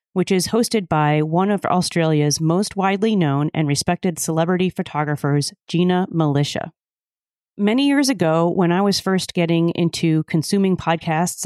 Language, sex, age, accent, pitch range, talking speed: English, female, 30-49, American, 155-195 Hz, 140 wpm